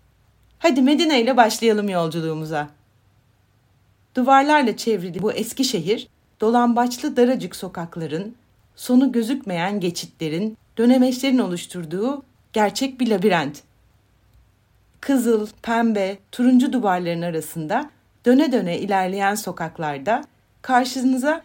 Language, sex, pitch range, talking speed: Turkish, female, 170-255 Hz, 85 wpm